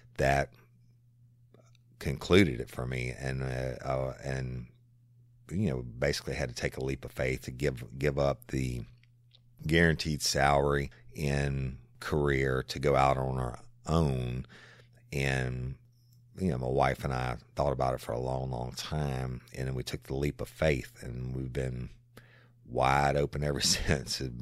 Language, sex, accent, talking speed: English, male, American, 160 wpm